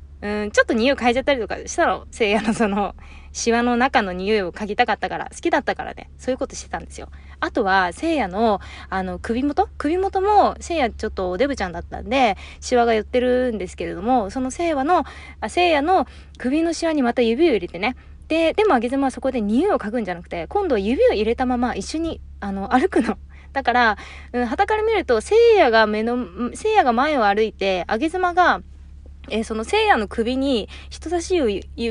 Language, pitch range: Japanese, 205-285 Hz